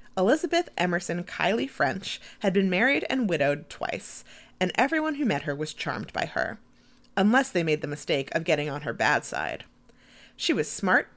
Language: English